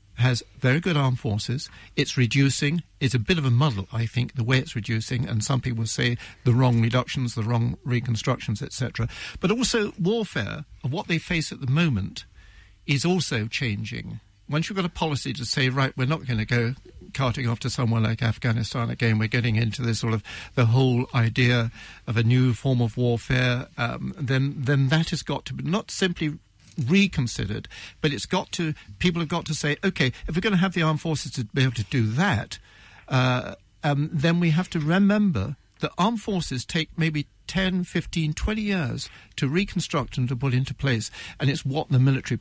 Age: 60-79